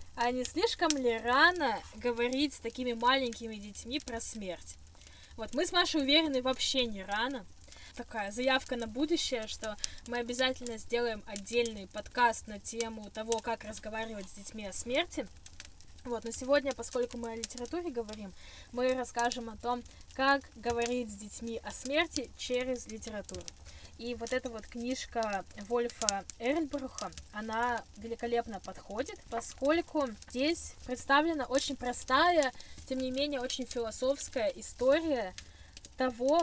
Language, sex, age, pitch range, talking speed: Russian, female, 10-29, 230-275 Hz, 135 wpm